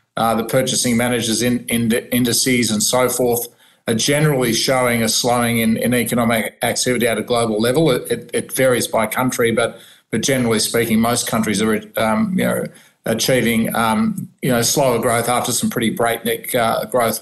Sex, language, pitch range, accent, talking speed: male, English, 115-130 Hz, Australian, 180 wpm